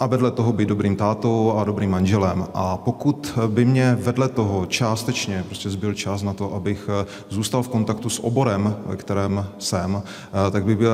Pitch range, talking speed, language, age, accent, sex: 100-110 Hz, 180 wpm, Czech, 30-49, native, male